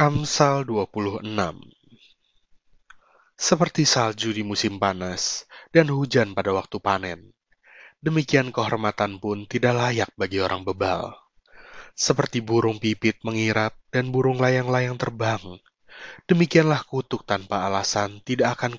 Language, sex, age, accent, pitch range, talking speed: Indonesian, male, 30-49, native, 105-130 Hz, 110 wpm